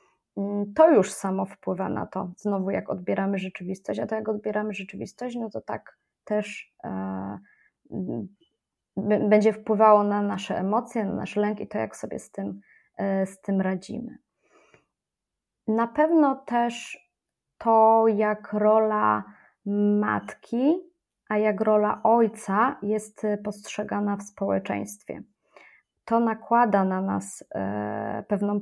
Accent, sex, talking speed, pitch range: native, female, 115 wpm, 195-225 Hz